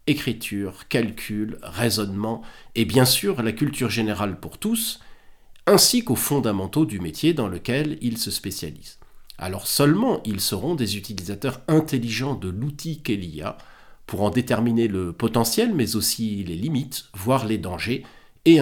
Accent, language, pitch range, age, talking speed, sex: French, French, 105-145 Hz, 50-69, 140 wpm, male